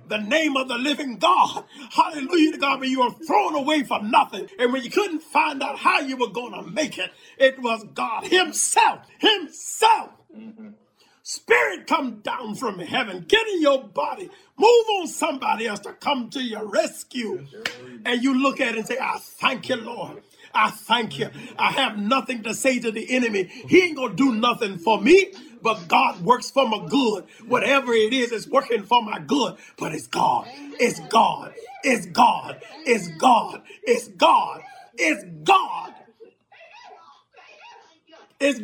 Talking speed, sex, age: 175 wpm, male, 40-59